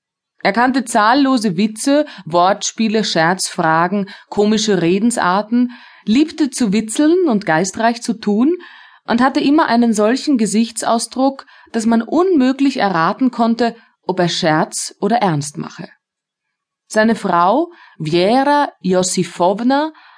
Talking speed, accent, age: 105 wpm, German, 30-49